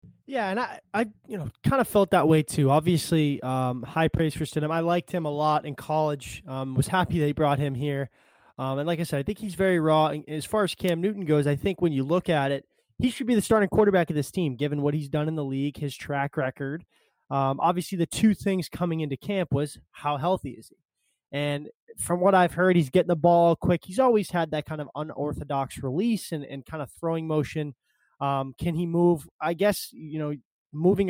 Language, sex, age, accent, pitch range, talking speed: English, male, 20-39, American, 145-180 Hz, 235 wpm